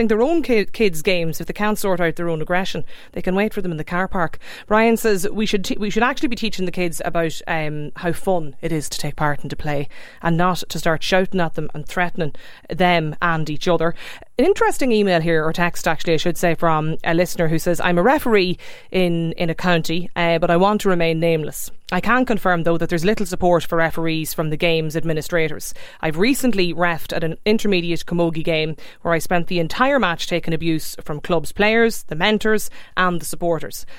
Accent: Irish